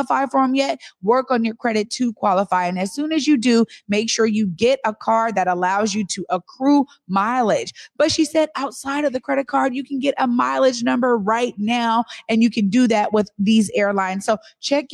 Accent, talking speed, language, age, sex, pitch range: American, 215 wpm, English, 30-49, female, 195-260 Hz